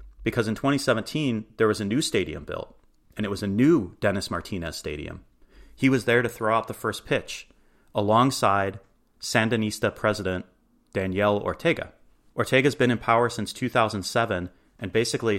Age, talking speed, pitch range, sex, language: 30-49, 150 wpm, 95-115 Hz, male, English